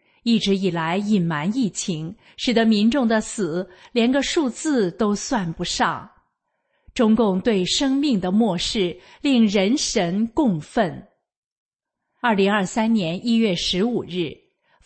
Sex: female